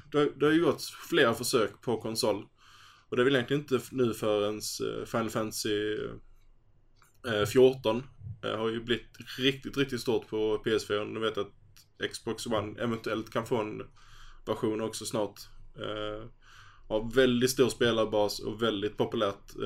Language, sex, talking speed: Swedish, male, 155 wpm